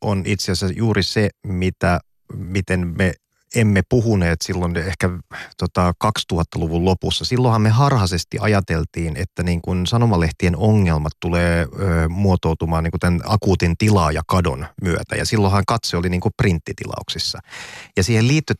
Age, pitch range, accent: 30-49, 85-105 Hz, native